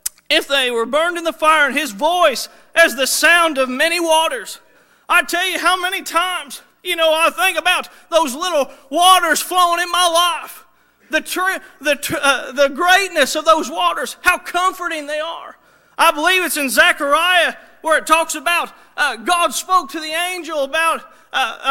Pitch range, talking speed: 305-380 Hz, 180 wpm